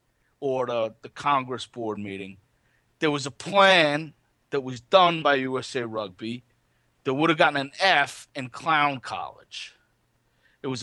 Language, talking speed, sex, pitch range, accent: English, 150 wpm, male, 125-160 Hz, American